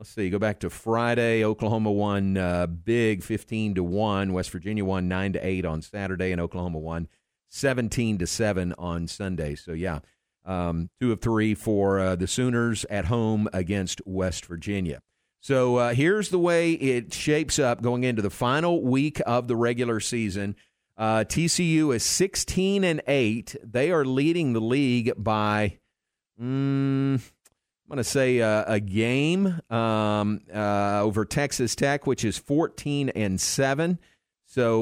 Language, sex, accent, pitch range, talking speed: English, male, American, 95-125 Hz, 160 wpm